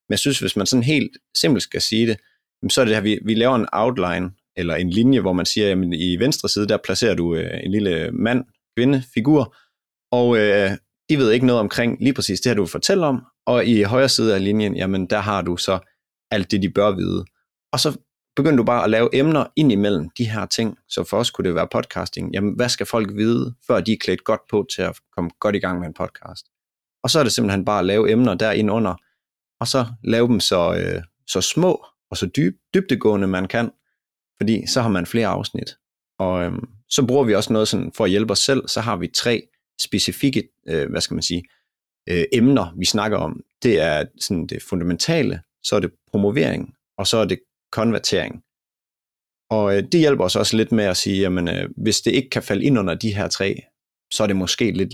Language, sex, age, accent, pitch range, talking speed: Danish, male, 30-49, native, 95-120 Hz, 225 wpm